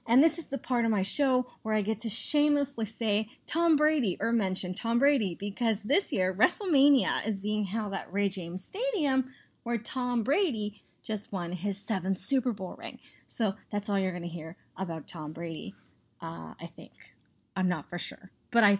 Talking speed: 190 wpm